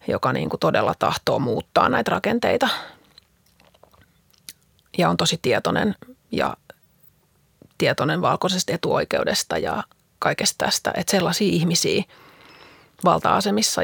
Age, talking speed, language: 30-49, 100 wpm, Finnish